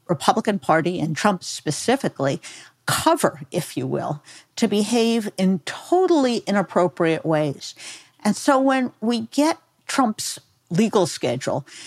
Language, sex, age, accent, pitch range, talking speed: English, female, 50-69, American, 170-260 Hz, 115 wpm